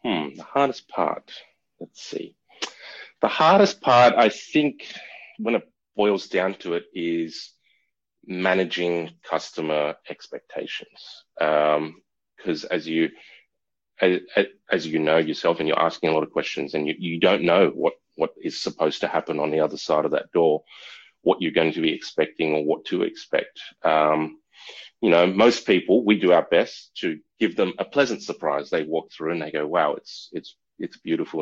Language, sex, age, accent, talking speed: English, male, 30-49, Australian, 175 wpm